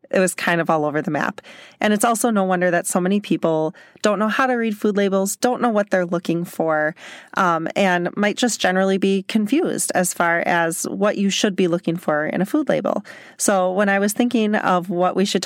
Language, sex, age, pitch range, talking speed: English, female, 30-49, 175-210 Hz, 230 wpm